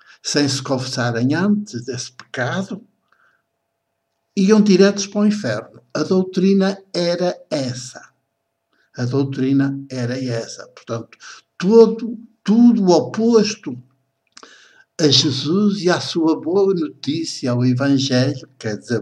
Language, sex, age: Portuguese, male, 60-79